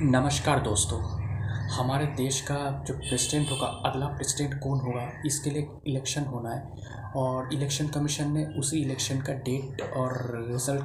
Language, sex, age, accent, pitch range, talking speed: Hindi, male, 20-39, native, 125-140 Hz, 150 wpm